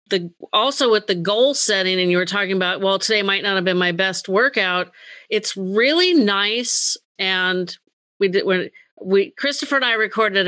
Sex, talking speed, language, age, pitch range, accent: female, 185 wpm, English, 40-59, 185-220 Hz, American